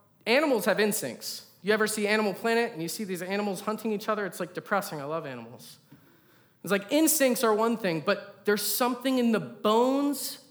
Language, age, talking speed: English, 30-49, 195 wpm